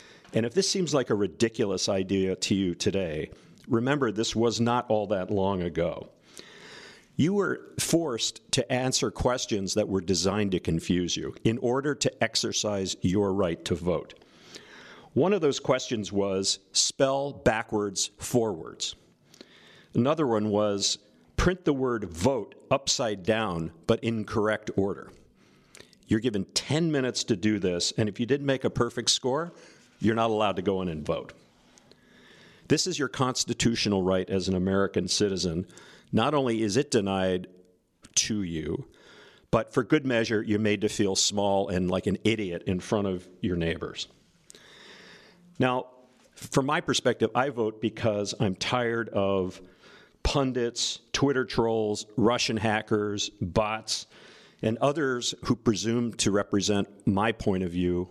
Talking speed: 150 wpm